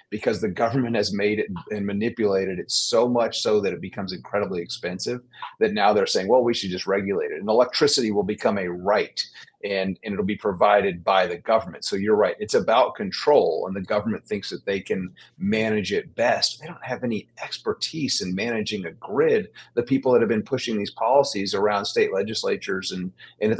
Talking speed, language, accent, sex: 200 wpm, English, American, male